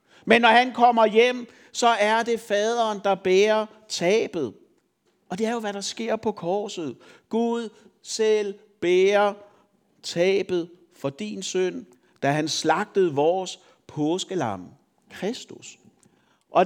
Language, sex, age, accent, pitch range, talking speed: Danish, male, 60-79, native, 185-225 Hz, 125 wpm